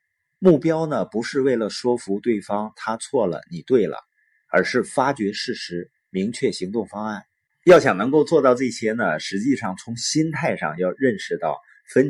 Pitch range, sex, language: 100-145 Hz, male, Chinese